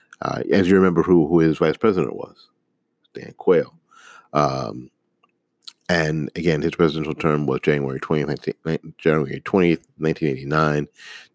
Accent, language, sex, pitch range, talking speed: American, English, male, 70-80 Hz, 115 wpm